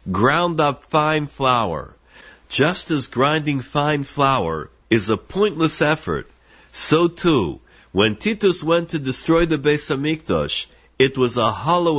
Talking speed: 130 wpm